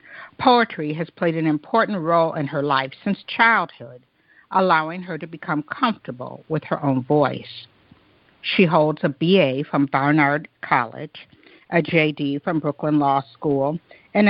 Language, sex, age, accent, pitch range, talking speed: English, female, 60-79, American, 140-190 Hz, 145 wpm